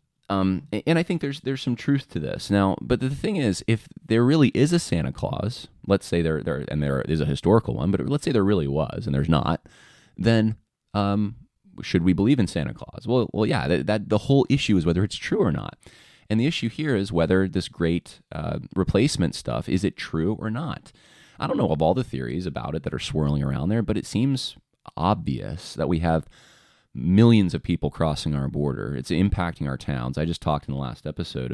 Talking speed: 225 wpm